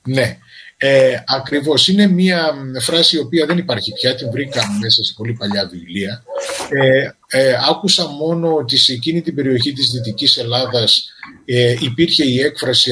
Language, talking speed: Greek, 160 wpm